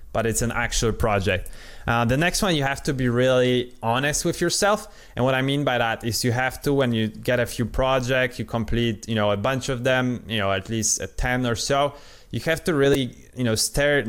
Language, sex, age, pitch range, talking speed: English, male, 20-39, 110-130 Hz, 240 wpm